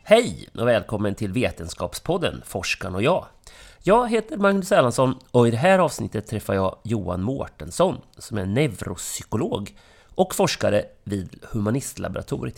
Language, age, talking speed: English, 30-49, 135 wpm